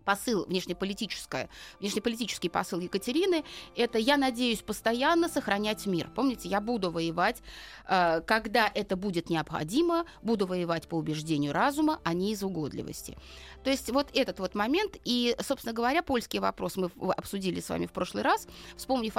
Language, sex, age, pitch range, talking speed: Russian, female, 30-49, 195-280 Hz, 145 wpm